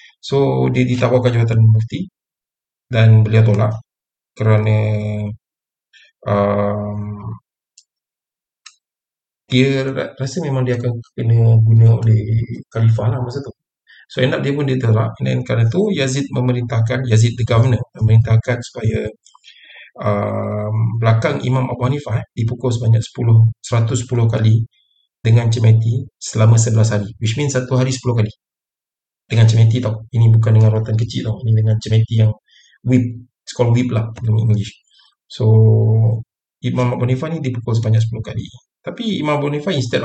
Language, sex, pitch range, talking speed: Malay, male, 110-130 Hz, 140 wpm